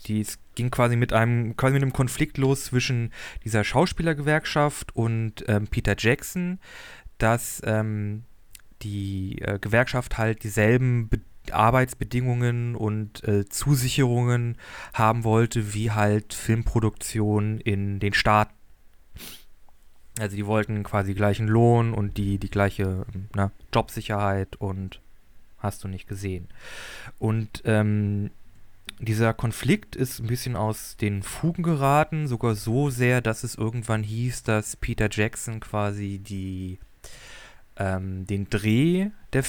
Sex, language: male, German